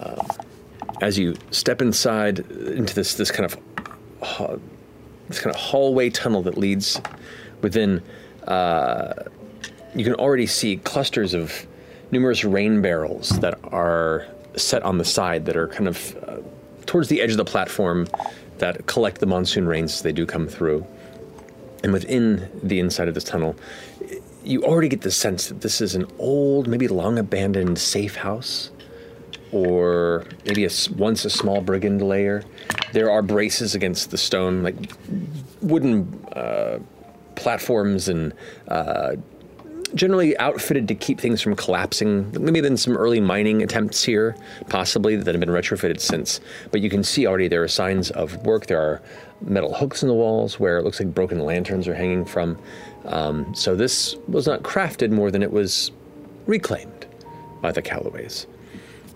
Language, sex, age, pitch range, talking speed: English, male, 30-49, 90-115 Hz, 160 wpm